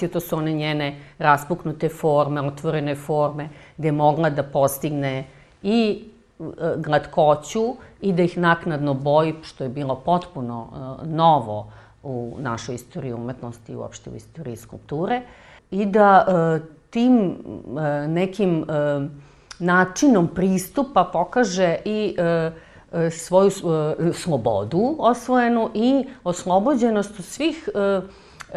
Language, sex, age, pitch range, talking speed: Croatian, female, 40-59, 145-190 Hz, 115 wpm